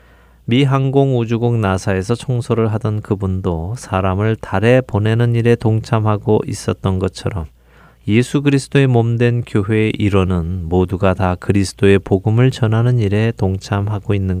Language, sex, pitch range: Korean, male, 95-120 Hz